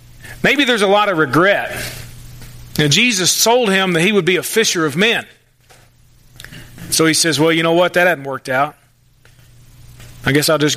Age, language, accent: 40-59, English, American